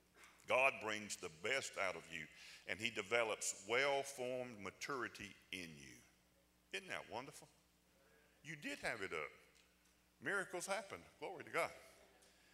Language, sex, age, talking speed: English, male, 50-69, 130 wpm